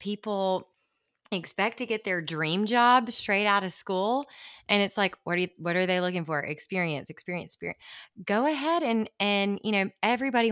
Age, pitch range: 20-39, 160-210 Hz